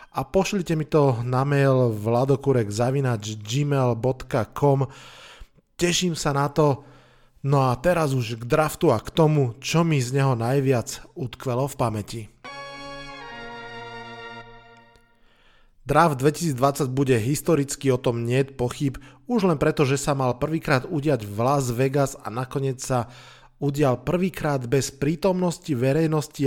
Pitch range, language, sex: 125-155 Hz, Slovak, male